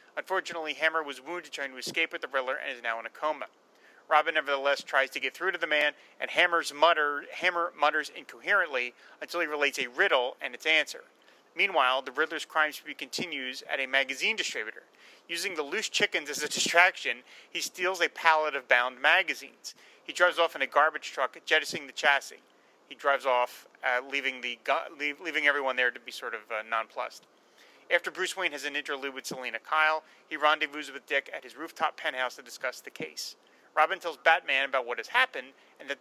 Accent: American